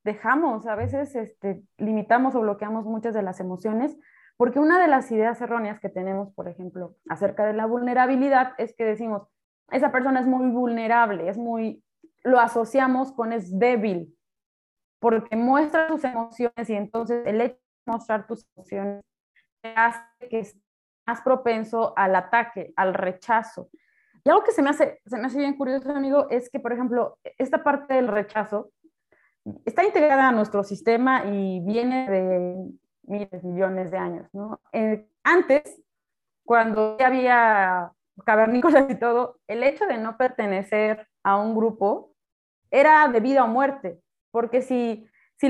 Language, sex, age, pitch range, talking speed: Spanish, female, 20-39, 210-260 Hz, 155 wpm